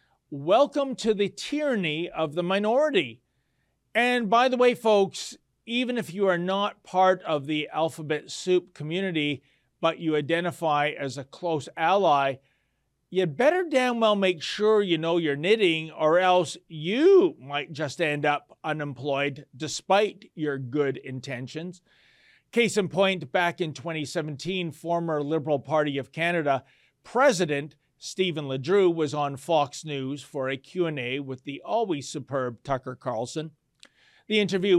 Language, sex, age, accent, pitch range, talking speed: English, male, 40-59, American, 145-190 Hz, 140 wpm